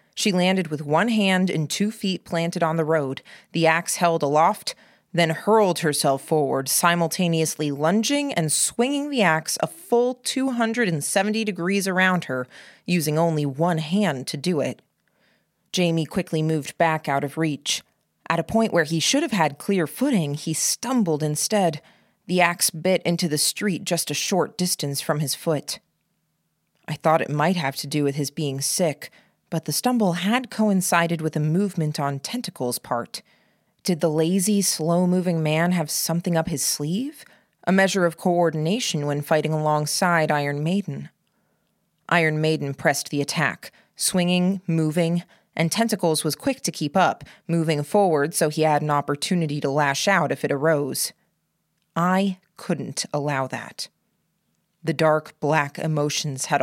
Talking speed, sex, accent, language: 160 wpm, female, American, English